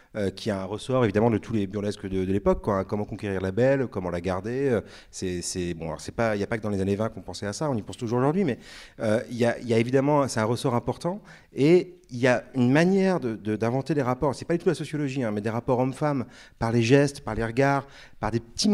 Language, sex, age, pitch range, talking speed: French, male, 40-59, 105-140 Hz, 280 wpm